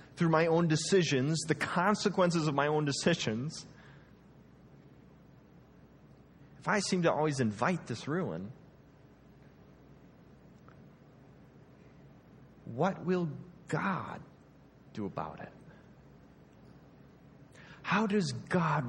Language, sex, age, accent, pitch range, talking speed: English, male, 30-49, American, 120-165 Hz, 85 wpm